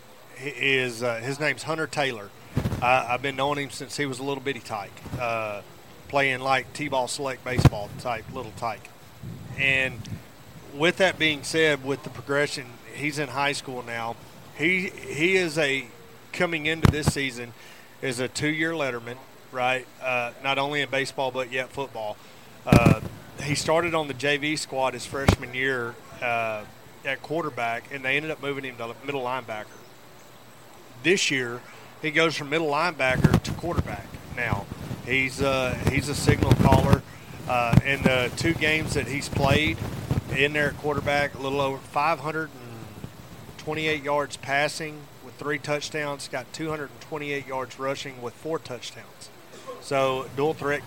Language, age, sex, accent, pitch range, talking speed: English, 30-49, male, American, 125-145 Hz, 155 wpm